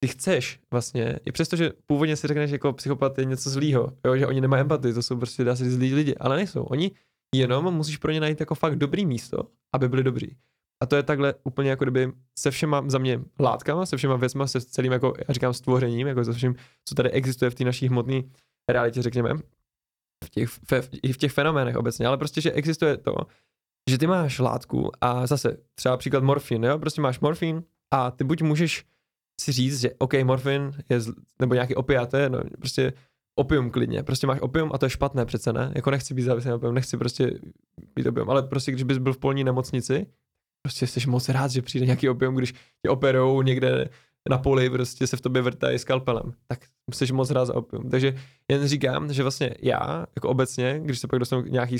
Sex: male